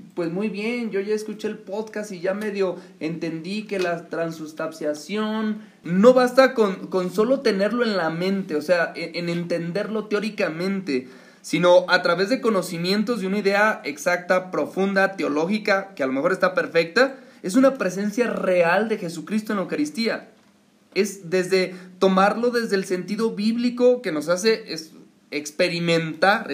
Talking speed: 150 wpm